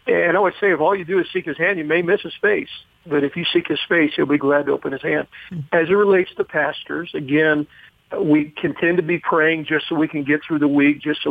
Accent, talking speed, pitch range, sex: American, 275 wpm, 145-170 Hz, male